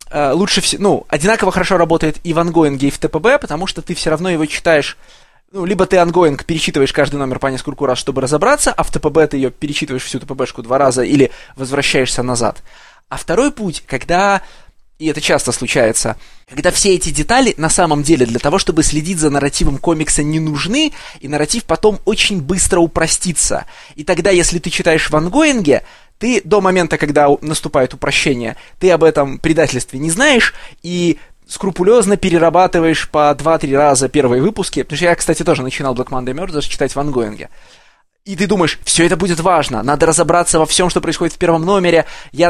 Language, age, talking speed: Russian, 20-39, 180 wpm